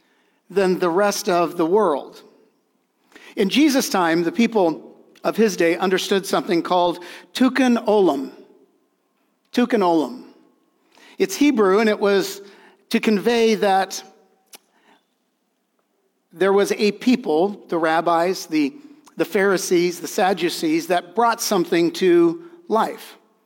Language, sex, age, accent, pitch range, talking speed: English, male, 50-69, American, 185-245 Hz, 115 wpm